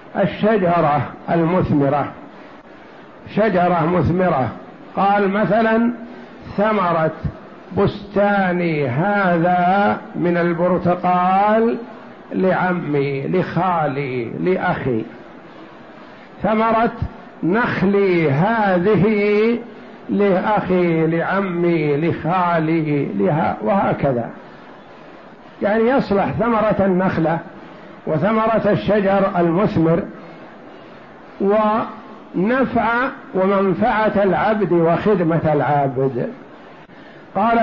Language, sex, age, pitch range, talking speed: Arabic, male, 60-79, 170-220 Hz, 55 wpm